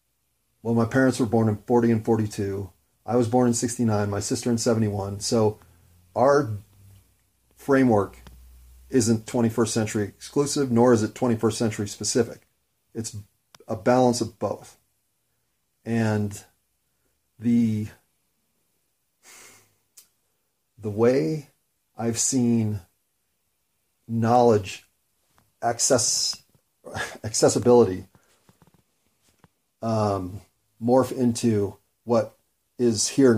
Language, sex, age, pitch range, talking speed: English, male, 40-59, 105-125 Hz, 90 wpm